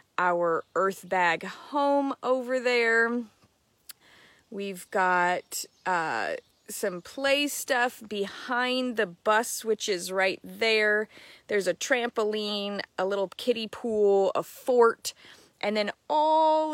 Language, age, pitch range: English, 30-49, 190-255 Hz